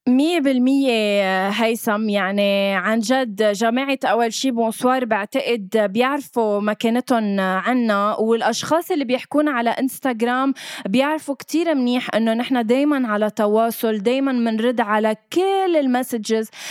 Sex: female